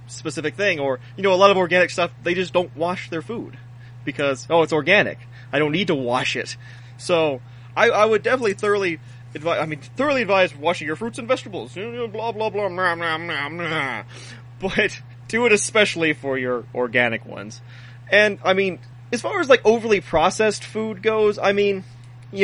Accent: American